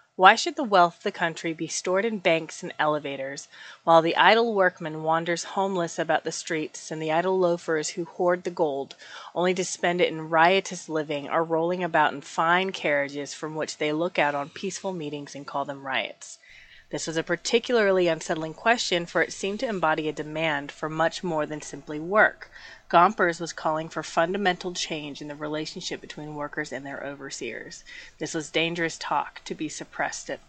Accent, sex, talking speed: American, female, 190 wpm